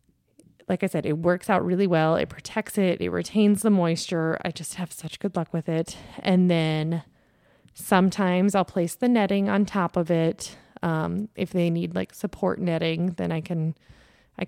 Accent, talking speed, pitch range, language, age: American, 185 wpm, 165-190 Hz, English, 20-39